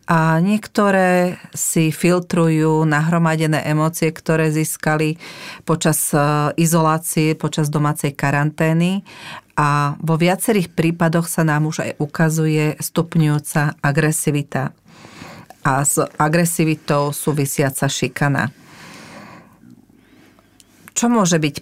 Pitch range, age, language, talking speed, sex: 150-165 Hz, 40-59, Slovak, 90 wpm, female